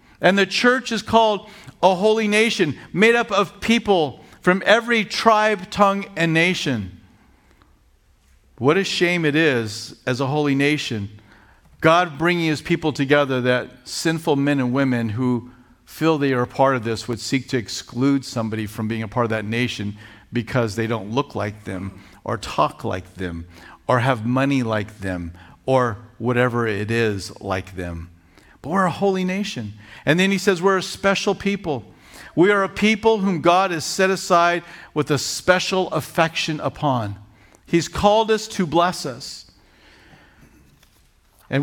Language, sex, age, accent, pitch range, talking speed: English, male, 50-69, American, 115-185 Hz, 160 wpm